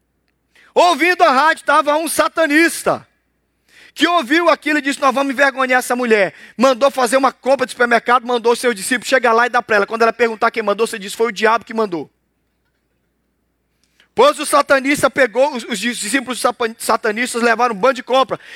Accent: Brazilian